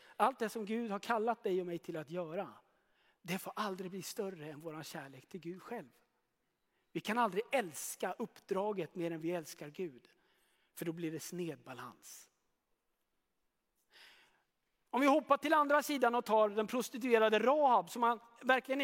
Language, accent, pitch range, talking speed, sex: Swedish, native, 185-260 Hz, 165 wpm, male